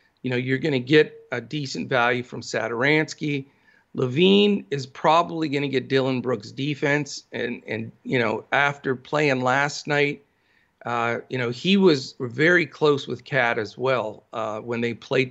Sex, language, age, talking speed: male, English, 40-59, 170 wpm